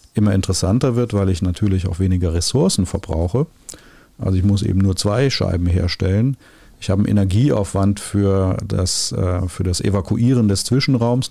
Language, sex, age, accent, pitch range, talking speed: German, male, 40-59, German, 95-115 Hz, 155 wpm